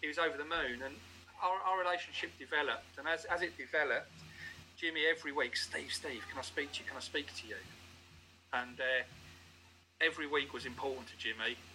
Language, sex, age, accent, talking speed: English, male, 40-59, British, 195 wpm